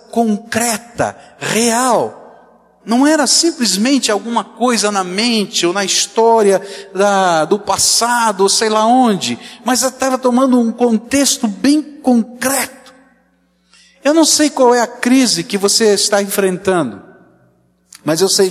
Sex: male